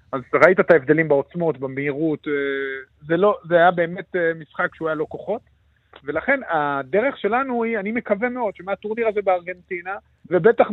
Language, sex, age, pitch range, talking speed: Hebrew, male, 40-59, 155-220 Hz, 150 wpm